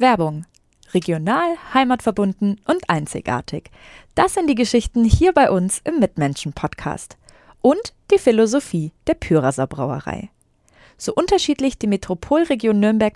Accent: German